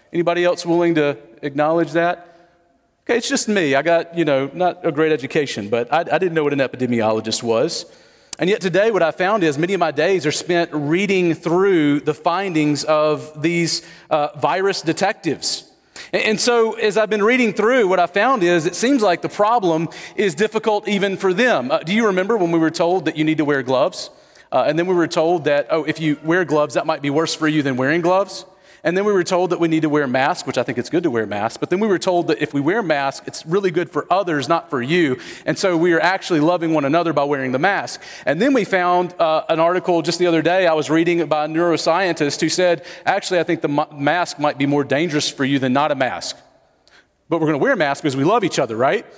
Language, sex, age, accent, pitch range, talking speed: English, male, 40-59, American, 155-195 Hz, 250 wpm